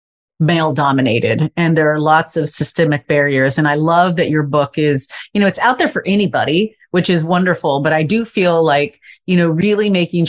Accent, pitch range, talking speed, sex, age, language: American, 145-175 Hz, 200 wpm, female, 30-49, English